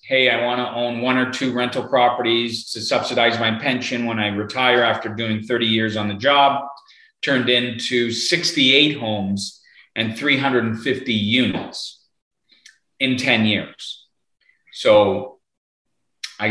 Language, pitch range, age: English, 105-130 Hz, 40-59